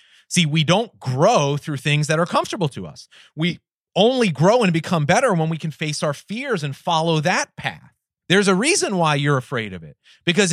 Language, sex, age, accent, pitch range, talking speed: English, male, 30-49, American, 125-165 Hz, 205 wpm